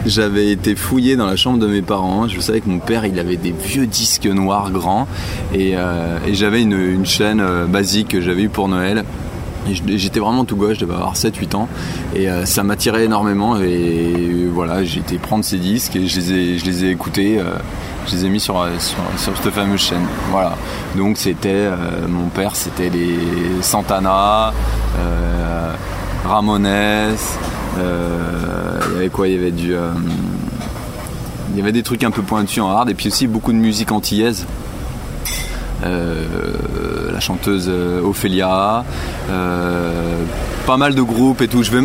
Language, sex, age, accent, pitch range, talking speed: French, male, 20-39, French, 90-105 Hz, 185 wpm